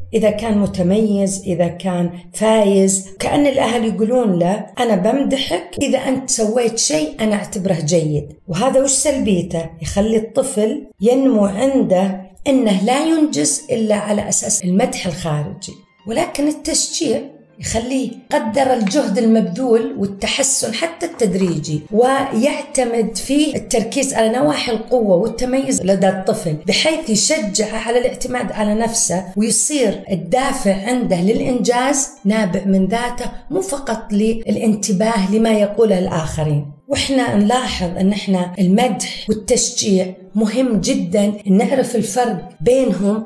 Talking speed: 115 wpm